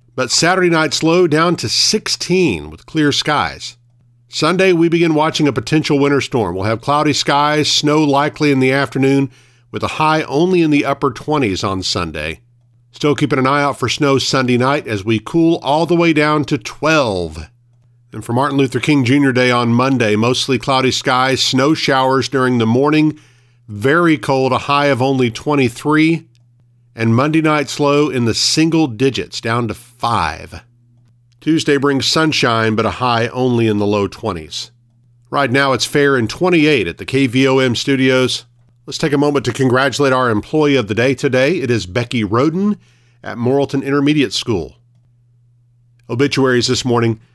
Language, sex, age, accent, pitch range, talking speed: English, male, 50-69, American, 120-145 Hz, 170 wpm